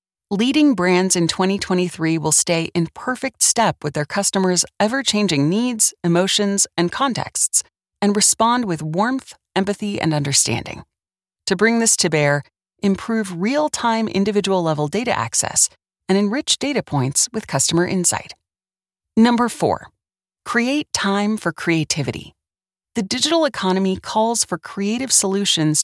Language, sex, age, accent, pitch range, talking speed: English, female, 30-49, American, 165-220 Hz, 125 wpm